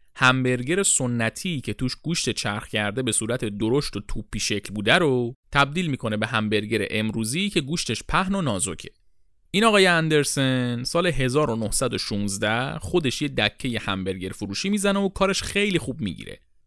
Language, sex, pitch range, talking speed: Persian, male, 105-170 Hz, 150 wpm